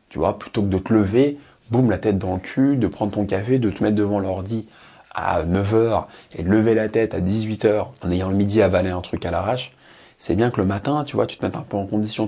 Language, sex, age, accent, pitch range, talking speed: English, male, 20-39, French, 95-120 Hz, 275 wpm